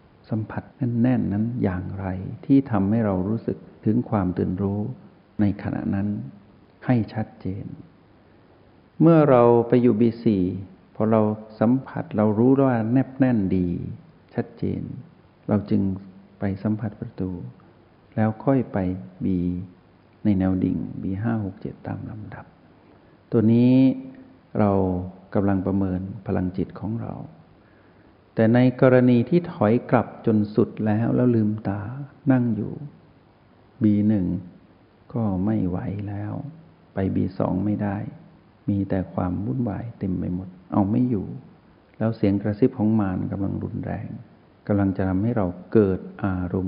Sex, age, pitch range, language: male, 60-79, 95-115 Hz, Thai